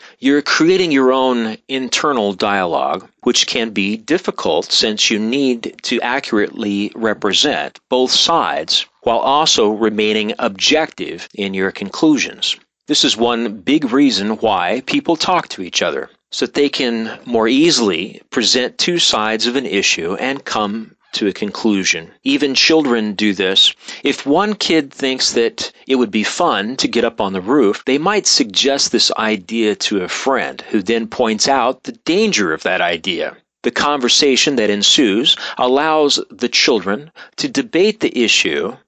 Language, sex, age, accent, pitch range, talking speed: English, male, 40-59, American, 110-145 Hz, 155 wpm